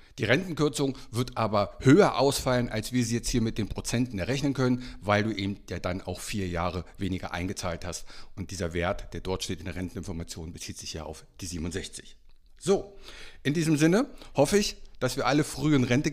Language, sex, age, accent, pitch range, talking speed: German, male, 50-69, German, 95-135 Hz, 200 wpm